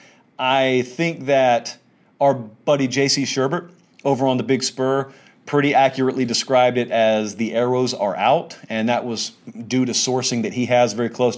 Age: 40-59